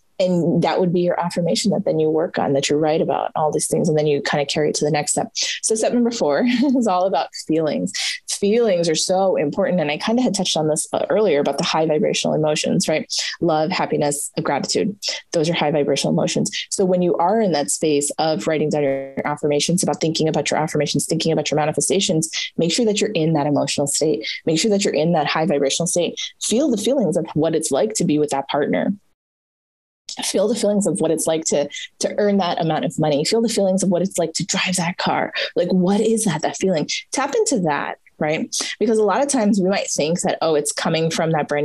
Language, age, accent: English, 20-39, American